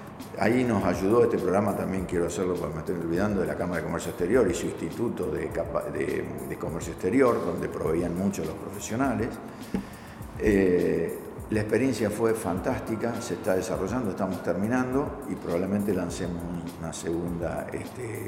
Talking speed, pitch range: 155 wpm, 90-110 Hz